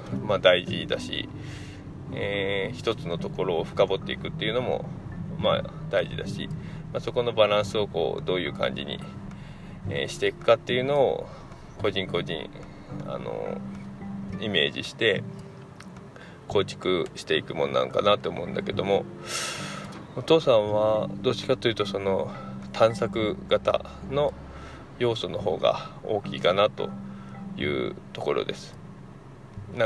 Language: Japanese